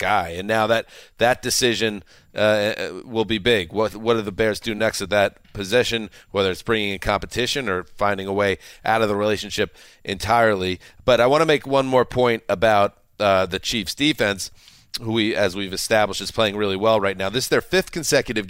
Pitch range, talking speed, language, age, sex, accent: 100-120 Hz, 205 wpm, English, 40-59, male, American